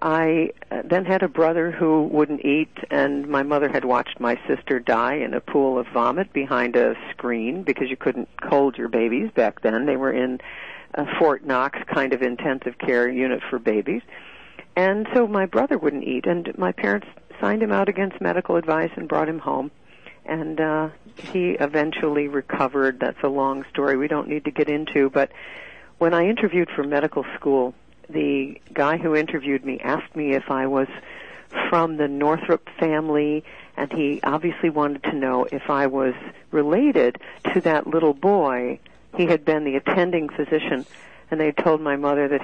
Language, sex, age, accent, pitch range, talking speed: English, female, 50-69, American, 135-165 Hz, 180 wpm